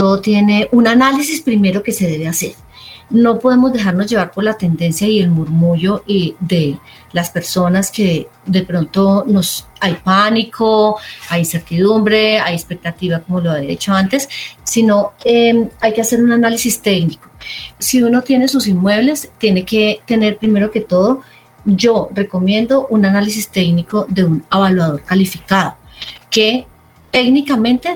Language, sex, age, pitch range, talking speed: Spanish, female, 30-49, 175-215 Hz, 145 wpm